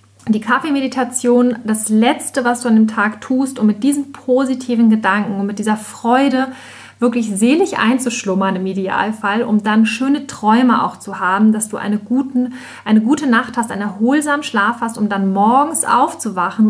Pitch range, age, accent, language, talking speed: 200-245 Hz, 30-49, German, German, 165 wpm